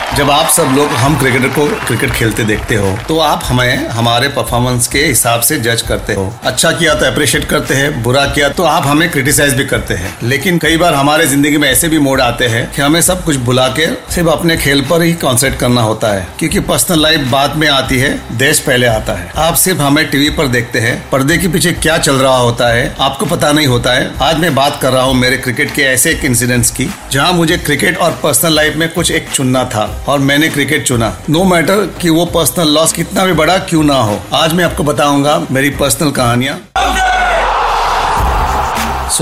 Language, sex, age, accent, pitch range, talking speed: Hindi, male, 40-59, native, 120-155 Hz, 220 wpm